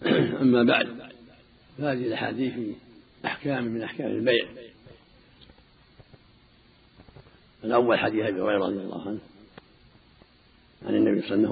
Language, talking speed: Arabic, 95 wpm